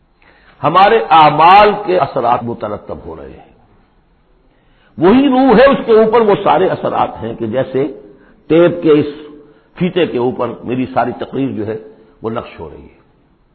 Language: Urdu